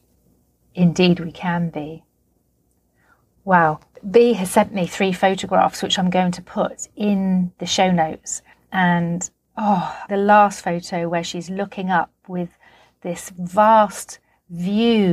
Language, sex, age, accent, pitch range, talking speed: English, female, 40-59, British, 170-205 Hz, 130 wpm